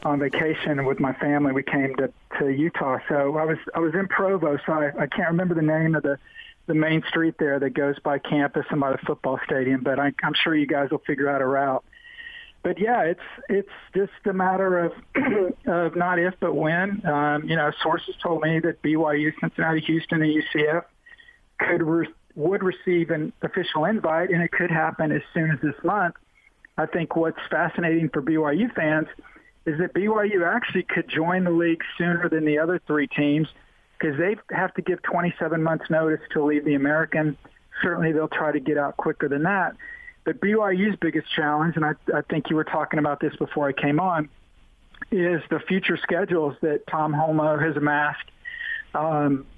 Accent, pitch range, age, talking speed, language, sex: American, 150-180 Hz, 50-69, 195 wpm, English, male